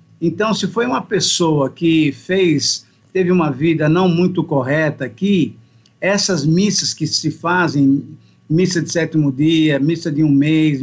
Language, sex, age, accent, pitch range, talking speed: Portuguese, male, 50-69, Brazilian, 150-195 Hz, 150 wpm